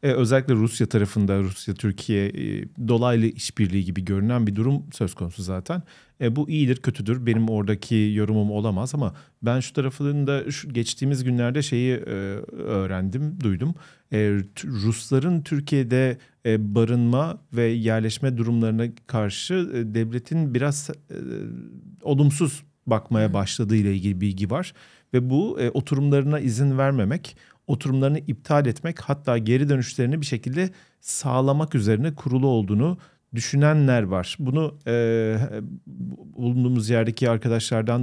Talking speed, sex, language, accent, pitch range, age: 110 wpm, male, Turkish, native, 110-140 Hz, 40-59